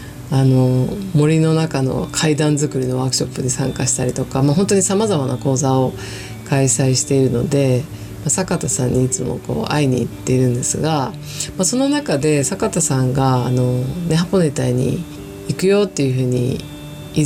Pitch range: 130-165 Hz